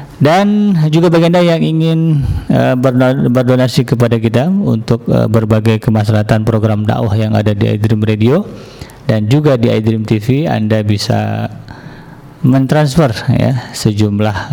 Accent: native